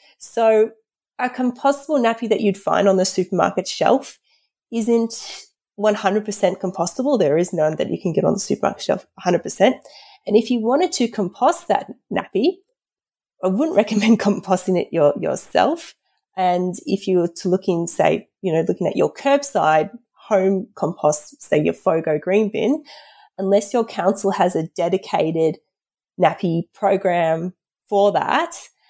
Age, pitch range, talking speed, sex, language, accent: 30-49, 180-255 Hz, 145 wpm, female, English, Australian